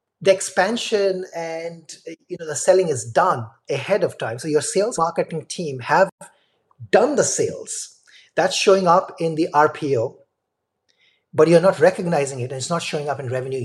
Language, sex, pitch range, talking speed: English, male, 155-235 Hz, 170 wpm